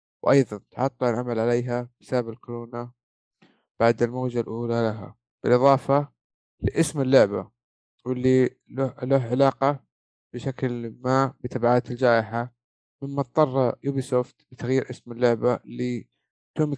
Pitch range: 120-140 Hz